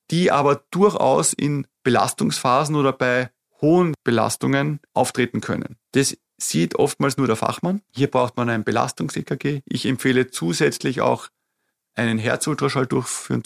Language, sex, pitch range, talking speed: German, male, 125-150 Hz, 130 wpm